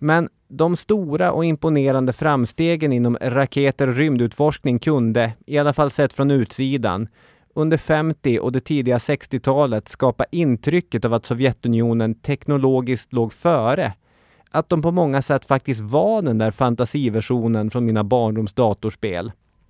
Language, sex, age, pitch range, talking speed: English, male, 30-49, 110-140 Hz, 135 wpm